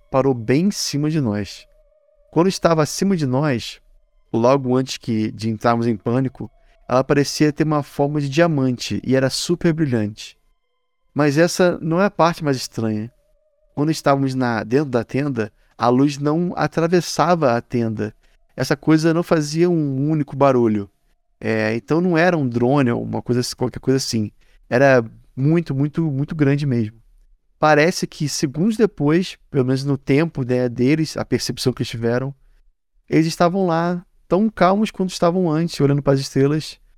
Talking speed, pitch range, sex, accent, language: 160 wpm, 125-160 Hz, male, Brazilian, Portuguese